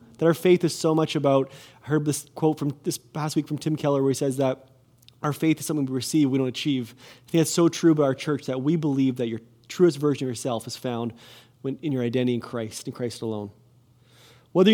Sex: male